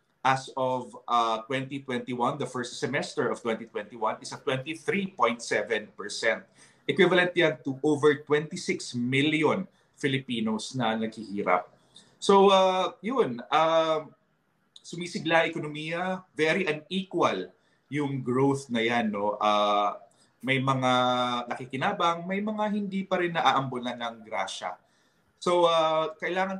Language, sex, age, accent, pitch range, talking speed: English, male, 20-39, Filipino, 120-165 Hz, 115 wpm